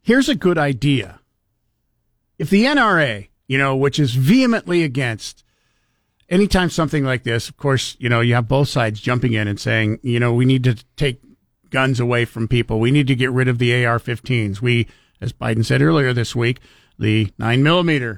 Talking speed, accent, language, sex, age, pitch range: 185 wpm, American, English, male, 50-69, 125-160 Hz